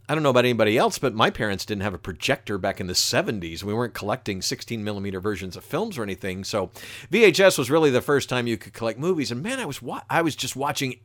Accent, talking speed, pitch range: American, 245 wpm, 105-135 Hz